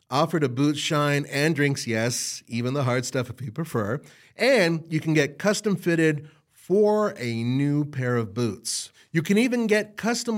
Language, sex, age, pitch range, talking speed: English, male, 40-59, 140-215 Hz, 180 wpm